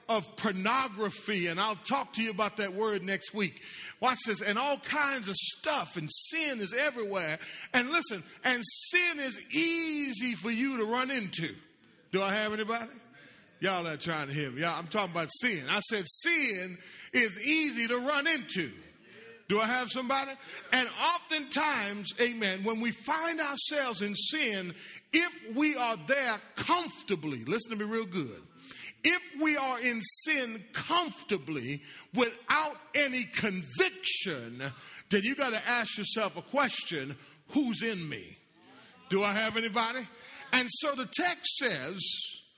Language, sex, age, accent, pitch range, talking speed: English, male, 40-59, American, 200-280 Hz, 155 wpm